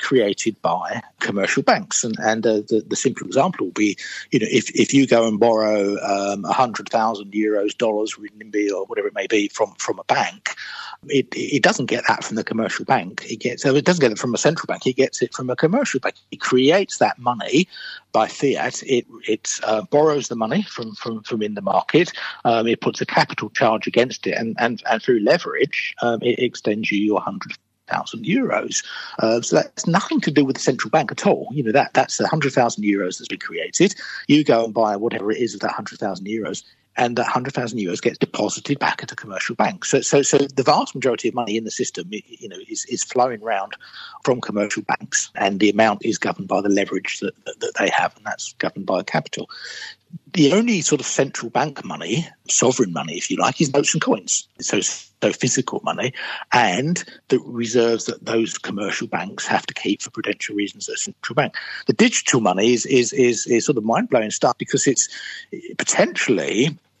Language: English